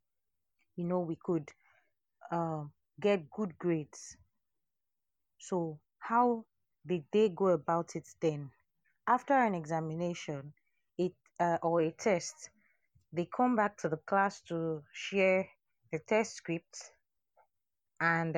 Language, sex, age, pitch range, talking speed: English, female, 30-49, 155-200 Hz, 115 wpm